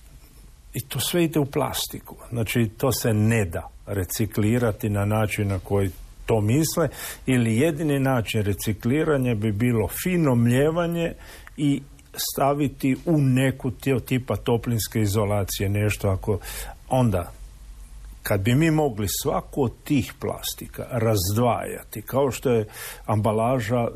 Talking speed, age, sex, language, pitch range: 125 wpm, 50-69, male, Croatian, 105-135 Hz